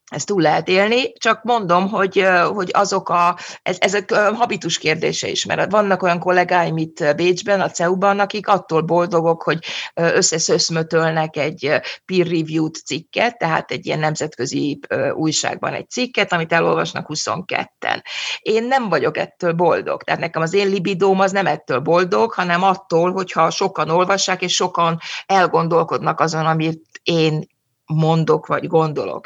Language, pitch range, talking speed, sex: Hungarian, 160-185 Hz, 145 wpm, female